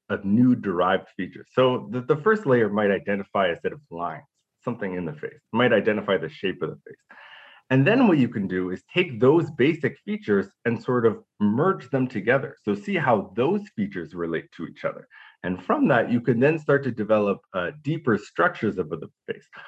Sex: male